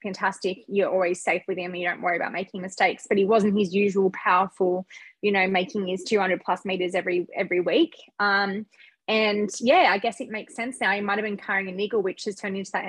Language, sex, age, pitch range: English, female, 20-39, 195-230 Hz